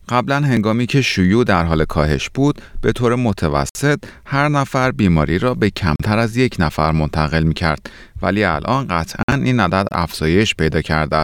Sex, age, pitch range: male, 30-49, 80-125 Hz